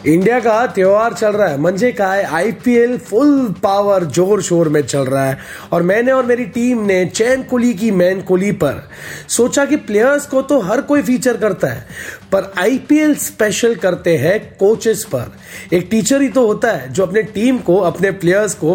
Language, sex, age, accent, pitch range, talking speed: Hindi, male, 30-49, native, 175-240 Hz, 190 wpm